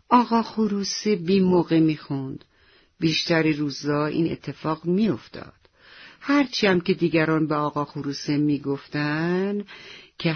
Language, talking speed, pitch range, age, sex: Persian, 110 wpm, 140-180 Hz, 50-69, female